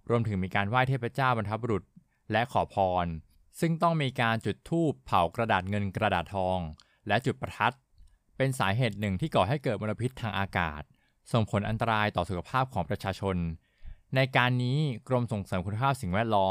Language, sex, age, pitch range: Thai, male, 20-39, 95-125 Hz